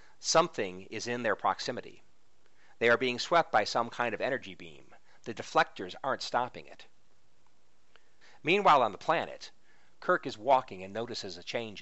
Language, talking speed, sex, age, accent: English, 155 wpm, male, 40-59, American